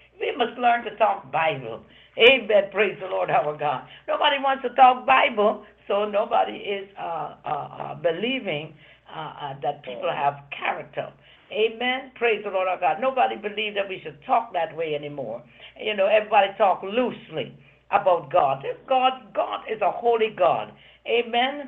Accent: American